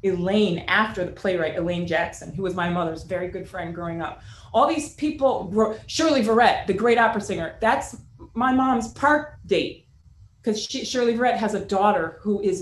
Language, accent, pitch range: English, American, 160-215 Hz